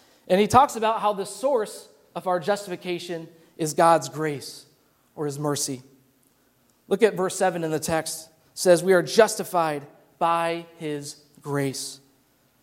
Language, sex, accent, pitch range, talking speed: English, male, American, 180-235 Hz, 145 wpm